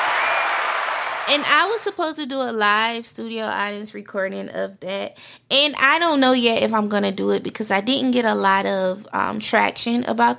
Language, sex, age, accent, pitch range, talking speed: English, female, 20-39, American, 170-240 Hz, 195 wpm